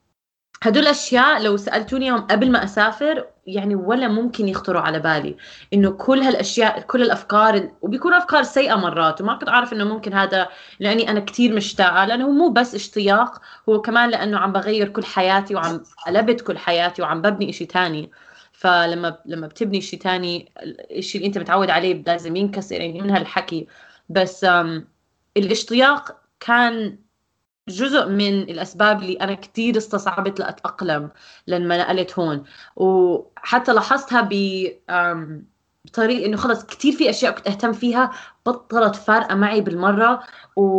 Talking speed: 140 wpm